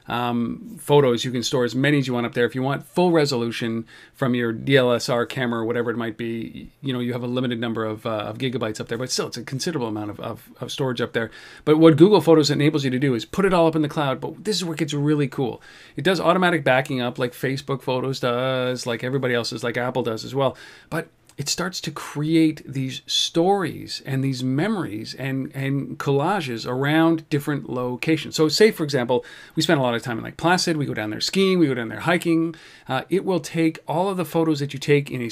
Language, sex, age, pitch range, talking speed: English, male, 40-59, 125-160 Hz, 245 wpm